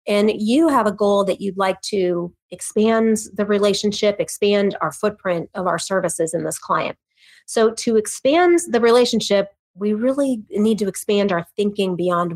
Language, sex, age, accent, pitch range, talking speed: English, female, 30-49, American, 180-220 Hz, 165 wpm